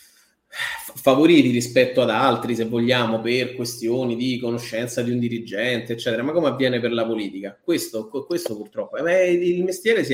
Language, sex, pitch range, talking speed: Italian, male, 120-150 Hz, 160 wpm